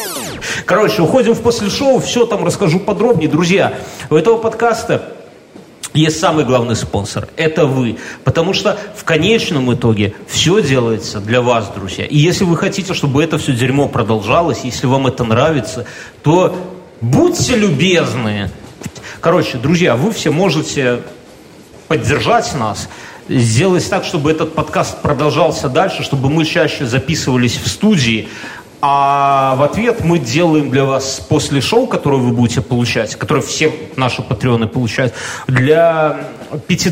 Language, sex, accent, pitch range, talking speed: Russian, male, native, 120-165 Hz, 140 wpm